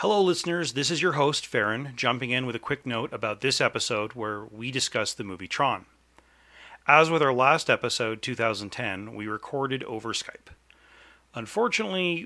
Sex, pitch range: male, 125-175 Hz